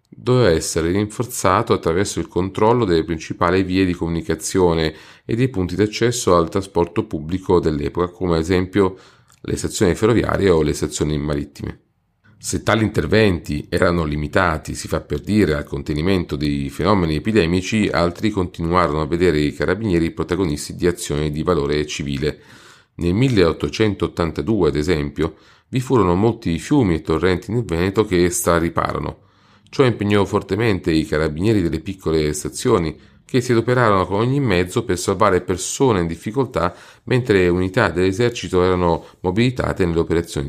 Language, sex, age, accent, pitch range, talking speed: Italian, male, 40-59, native, 85-105 Hz, 145 wpm